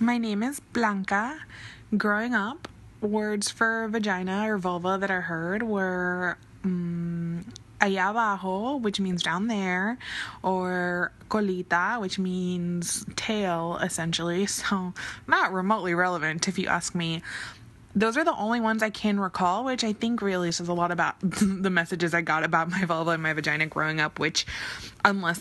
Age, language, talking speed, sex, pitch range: 20-39, English, 155 wpm, female, 170-210 Hz